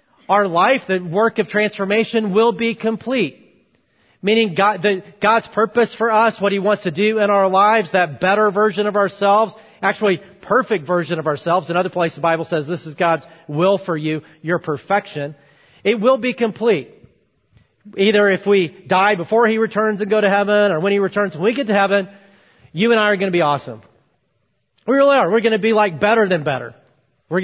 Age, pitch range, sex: 40-59, 175-220 Hz, male